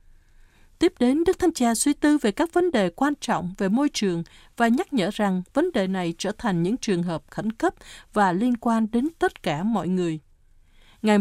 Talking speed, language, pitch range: 210 wpm, Vietnamese, 180-270 Hz